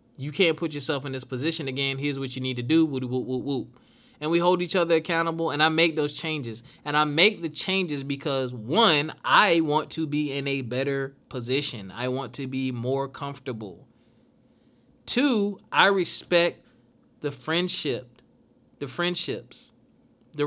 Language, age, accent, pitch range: English, 20-39, American, 130-160 Hz